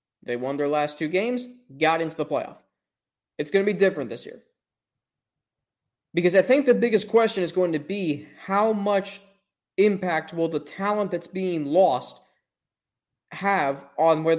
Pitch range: 165-215 Hz